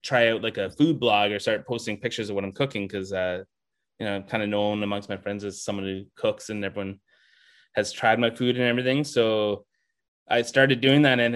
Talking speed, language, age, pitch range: 225 wpm, English, 20-39, 105-125 Hz